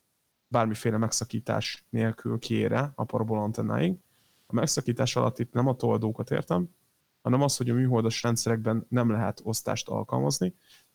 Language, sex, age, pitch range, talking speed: Hungarian, male, 20-39, 110-125 Hz, 130 wpm